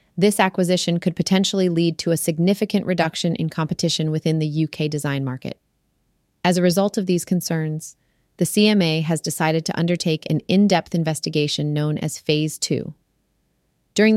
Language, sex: English, female